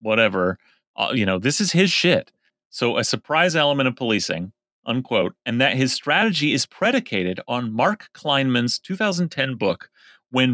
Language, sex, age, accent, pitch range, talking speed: English, male, 30-49, American, 110-135 Hz, 155 wpm